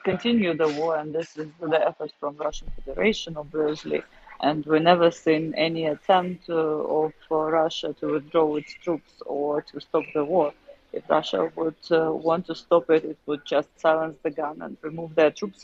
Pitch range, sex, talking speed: 155-170 Hz, female, 190 wpm